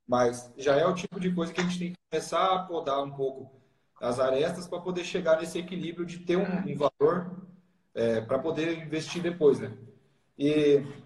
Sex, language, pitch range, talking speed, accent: male, Portuguese, 150-190 Hz, 190 wpm, Brazilian